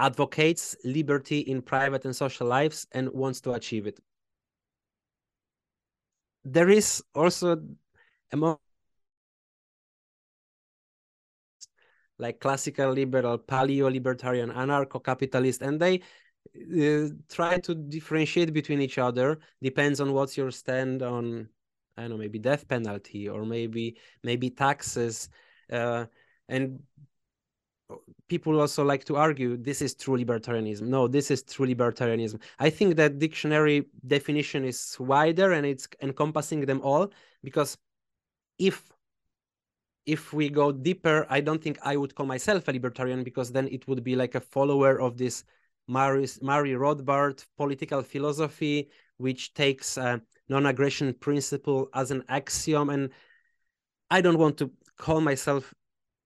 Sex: male